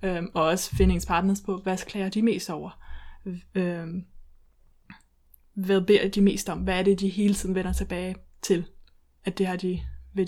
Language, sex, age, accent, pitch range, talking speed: Danish, female, 20-39, native, 180-200 Hz, 175 wpm